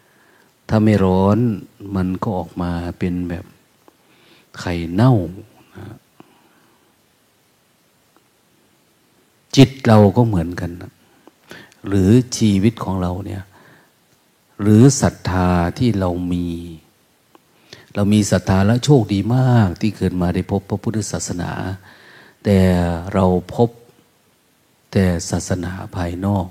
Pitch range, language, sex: 90-110 Hz, Thai, male